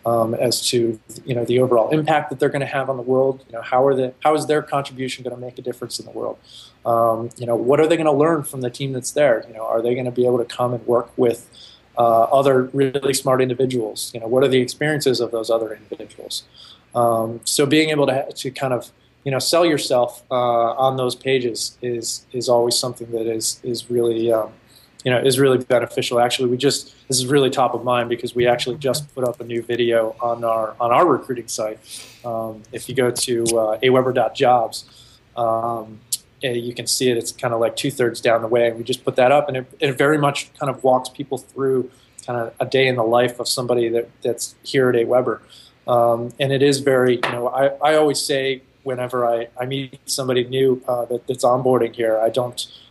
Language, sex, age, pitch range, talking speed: English, male, 20-39, 120-135 Hz, 235 wpm